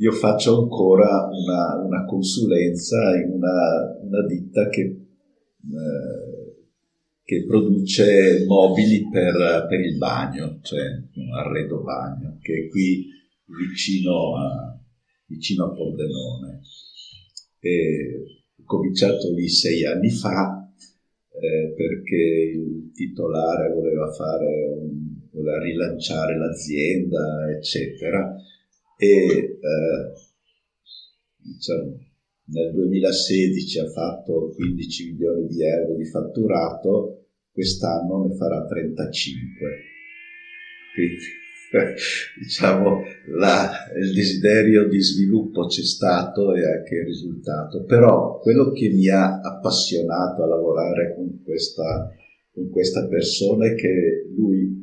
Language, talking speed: Italian, 100 wpm